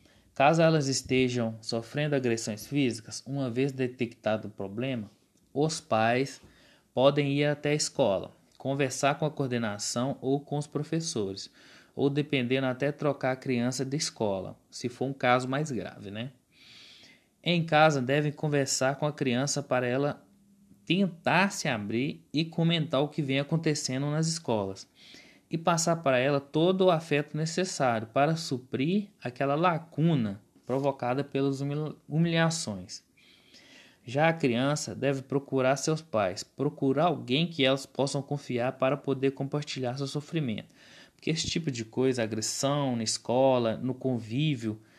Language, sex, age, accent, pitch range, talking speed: Portuguese, male, 20-39, Brazilian, 125-155 Hz, 140 wpm